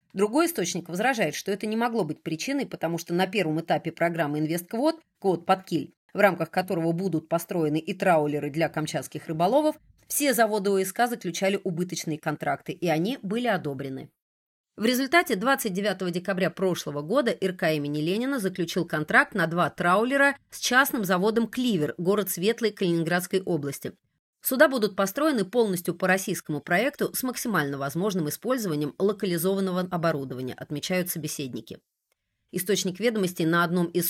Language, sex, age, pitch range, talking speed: Russian, female, 30-49, 160-215 Hz, 145 wpm